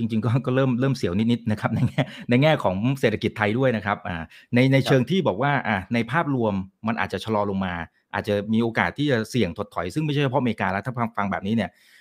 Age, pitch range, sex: 30-49, 105-140 Hz, male